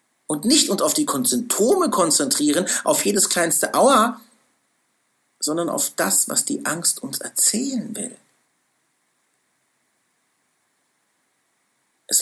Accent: German